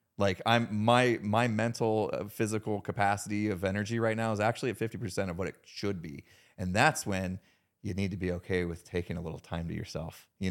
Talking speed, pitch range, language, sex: 210 wpm, 95-115 Hz, English, male